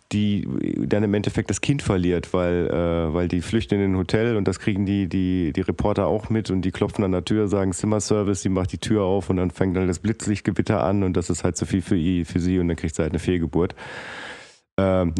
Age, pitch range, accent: 40-59, 90-105 Hz, German